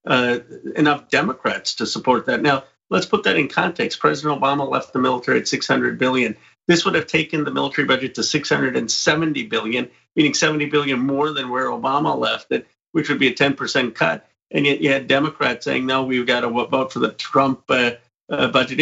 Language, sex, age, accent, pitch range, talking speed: English, male, 50-69, American, 125-145 Hz, 200 wpm